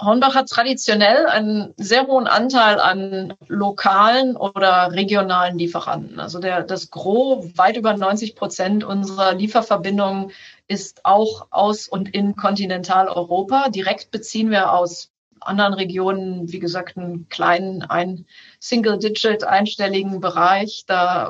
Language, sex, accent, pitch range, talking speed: German, female, German, 180-210 Hz, 115 wpm